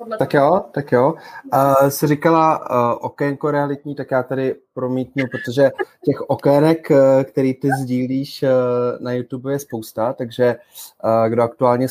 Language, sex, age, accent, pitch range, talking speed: Czech, male, 20-39, native, 110-140 Hz, 145 wpm